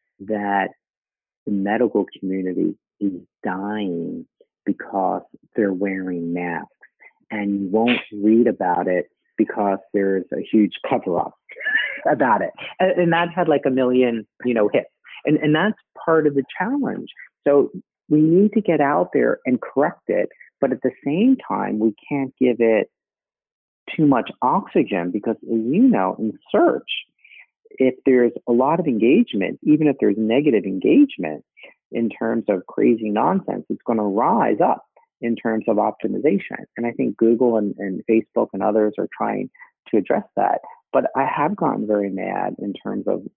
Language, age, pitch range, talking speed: English, 40-59, 105-145 Hz, 160 wpm